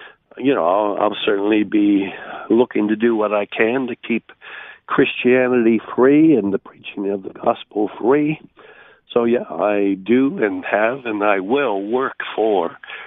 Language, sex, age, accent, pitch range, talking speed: English, male, 60-79, American, 110-125 Hz, 150 wpm